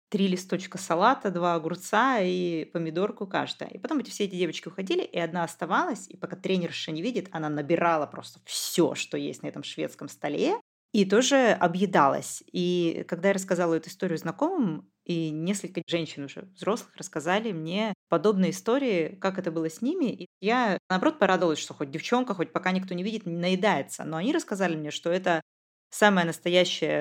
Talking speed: 175 wpm